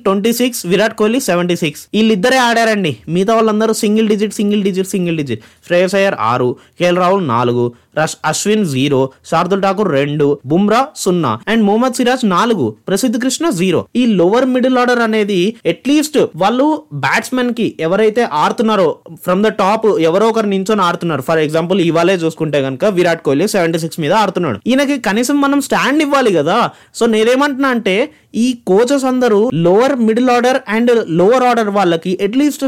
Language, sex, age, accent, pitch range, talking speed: Telugu, male, 20-39, native, 180-235 Hz, 160 wpm